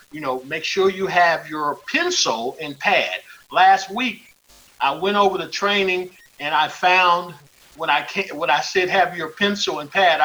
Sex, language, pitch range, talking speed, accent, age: male, English, 145-195 Hz, 180 wpm, American, 50-69